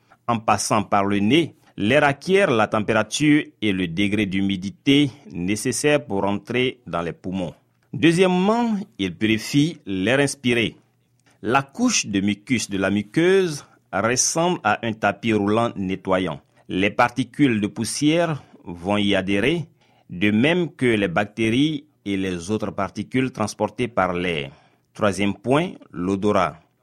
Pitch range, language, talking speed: 100-145 Hz, French, 130 wpm